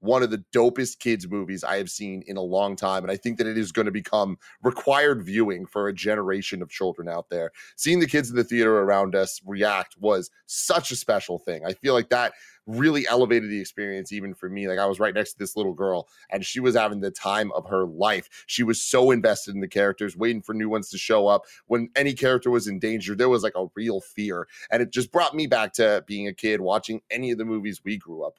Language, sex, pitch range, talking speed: English, male, 100-120 Hz, 250 wpm